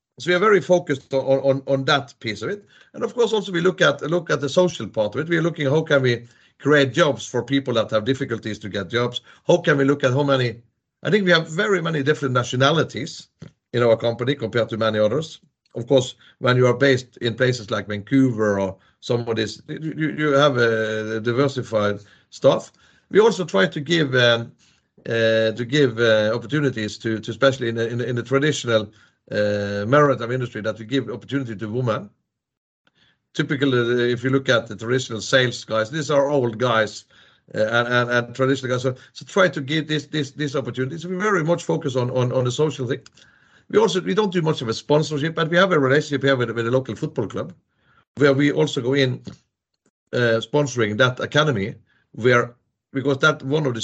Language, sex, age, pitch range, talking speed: English, male, 40-59, 115-150 Hz, 215 wpm